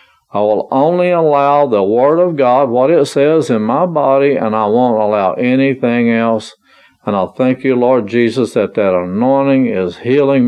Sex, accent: male, American